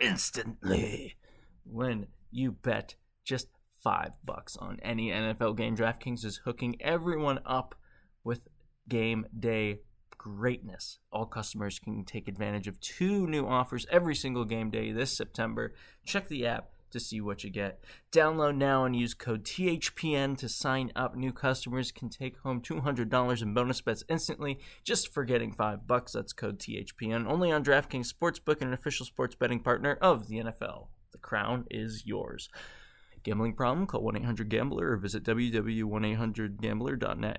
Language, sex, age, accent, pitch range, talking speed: English, male, 20-39, American, 110-140 Hz, 150 wpm